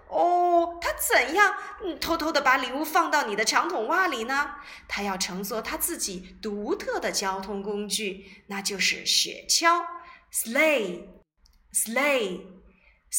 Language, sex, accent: Chinese, female, native